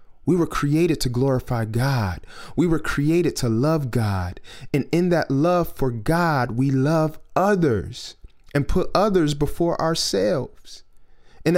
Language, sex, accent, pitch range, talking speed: English, male, American, 95-145 Hz, 140 wpm